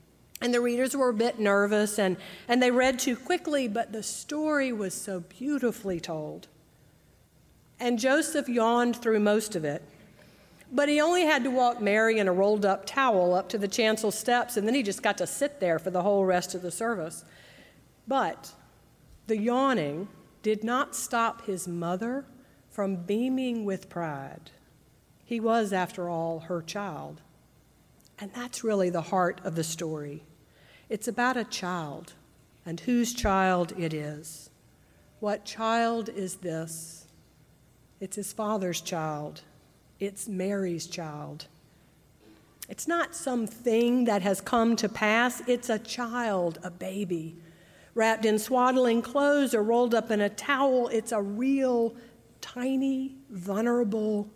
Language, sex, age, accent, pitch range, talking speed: English, female, 50-69, American, 175-240 Hz, 150 wpm